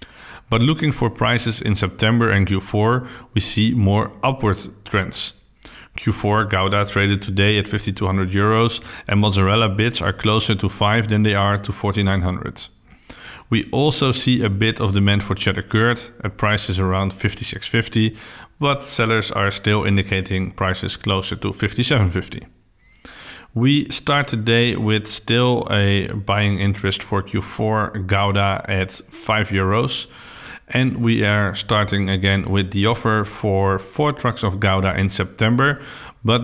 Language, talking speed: English, 140 wpm